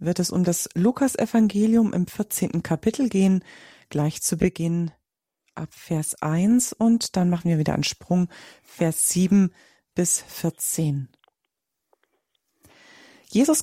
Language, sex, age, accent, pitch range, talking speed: German, female, 40-59, German, 170-225 Hz, 120 wpm